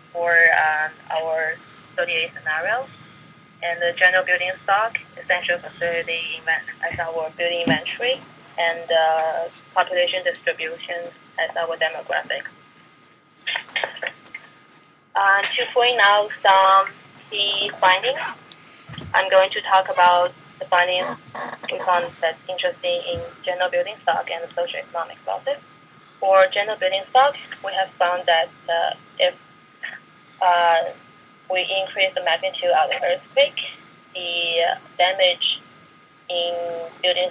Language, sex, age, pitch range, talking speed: English, female, 20-39, 170-190 Hz, 115 wpm